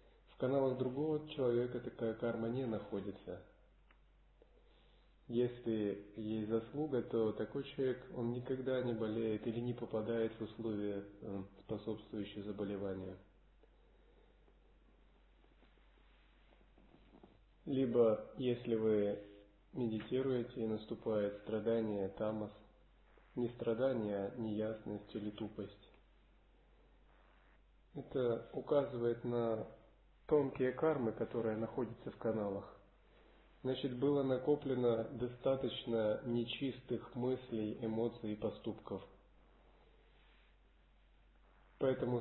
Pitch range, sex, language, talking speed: 105-125 Hz, male, Russian, 80 wpm